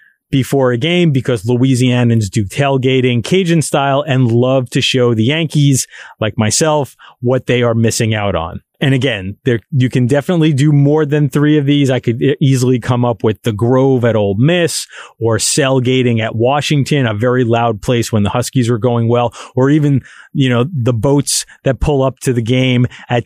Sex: male